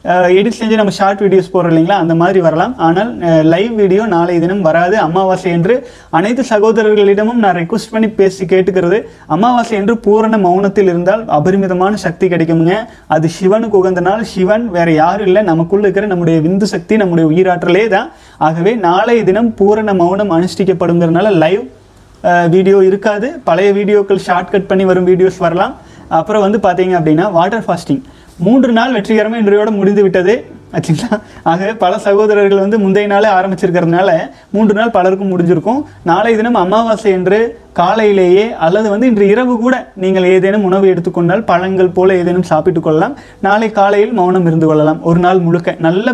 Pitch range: 180-210 Hz